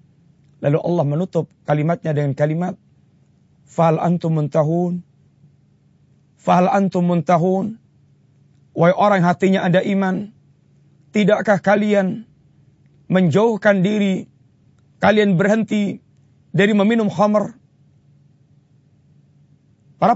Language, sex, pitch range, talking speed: Malay, male, 150-205 Hz, 80 wpm